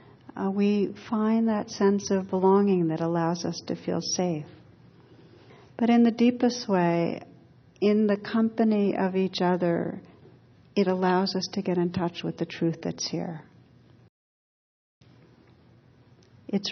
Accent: American